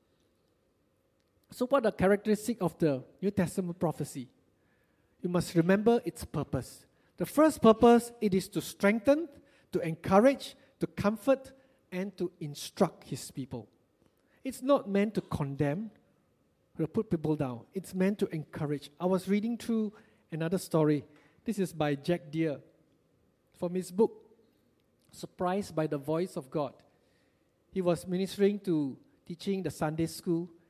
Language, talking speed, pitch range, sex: English, 140 wpm, 155-200 Hz, male